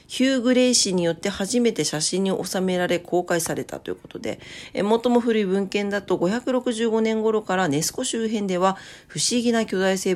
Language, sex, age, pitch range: Japanese, female, 40-59, 155-225 Hz